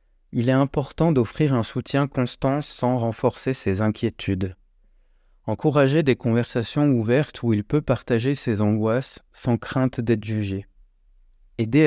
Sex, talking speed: male, 130 wpm